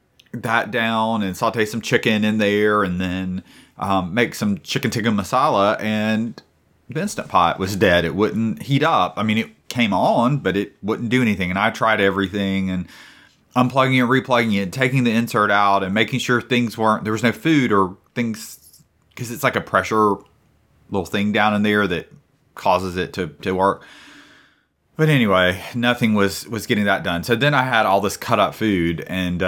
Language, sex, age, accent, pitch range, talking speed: English, male, 30-49, American, 95-120 Hz, 195 wpm